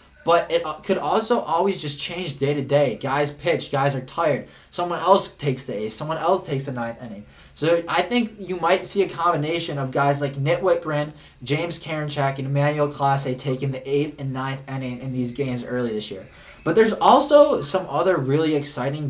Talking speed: 200 wpm